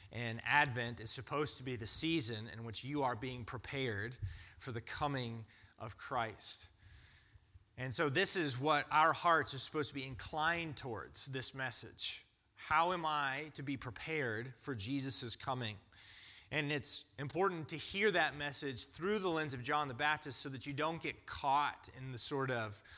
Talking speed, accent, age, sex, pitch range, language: 175 wpm, American, 30-49, male, 115-145 Hz, English